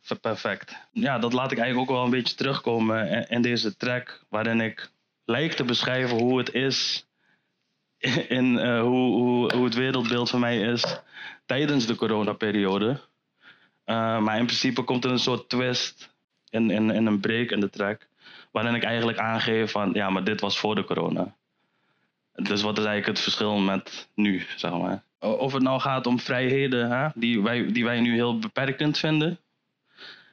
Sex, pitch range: male, 110-125 Hz